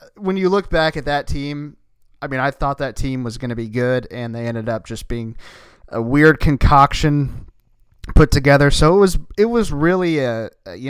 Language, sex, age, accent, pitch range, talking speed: English, male, 30-49, American, 120-155 Hz, 210 wpm